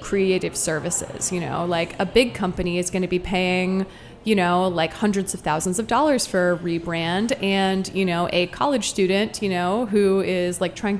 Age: 20-39